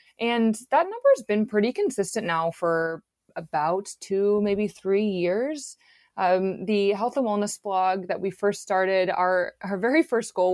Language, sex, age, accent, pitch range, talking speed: English, female, 20-39, American, 170-205 Hz, 165 wpm